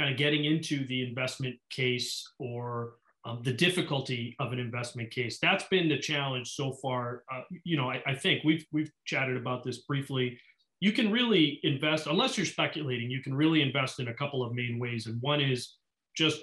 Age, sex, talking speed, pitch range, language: 30-49, male, 195 wpm, 125-150 Hz, English